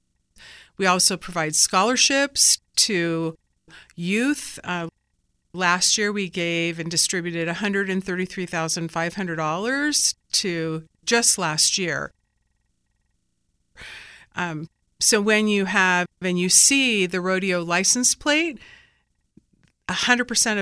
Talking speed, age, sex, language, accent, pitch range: 90 wpm, 40-59, female, English, American, 165-200 Hz